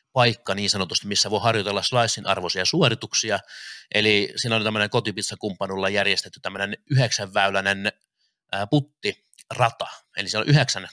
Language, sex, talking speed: Finnish, male, 120 wpm